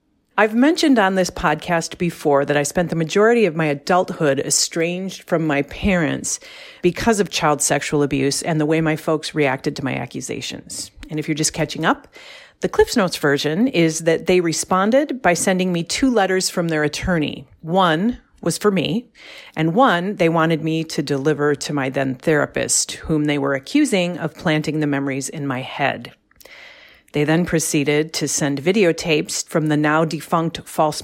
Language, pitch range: English, 150-185 Hz